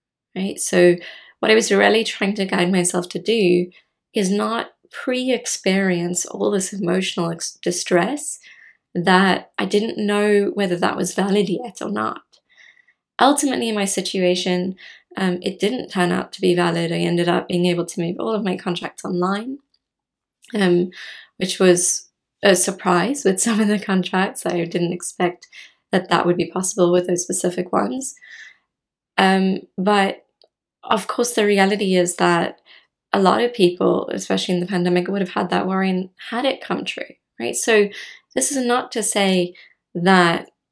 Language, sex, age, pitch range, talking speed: English, female, 20-39, 175-205 Hz, 160 wpm